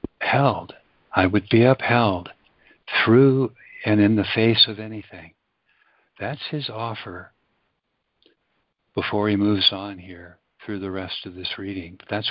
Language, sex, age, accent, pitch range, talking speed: English, male, 60-79, American, 95-115 Hz, 130 wpm